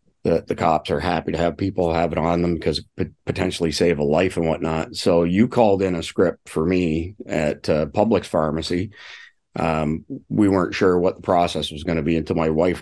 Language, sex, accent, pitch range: English, male, American, 85-95 Hz